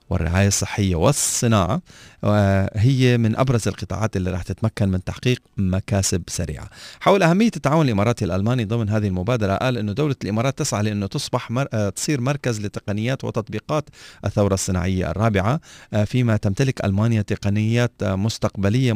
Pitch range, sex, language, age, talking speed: 95-120 Hz, male, Arabic, 40-59, 135 wpm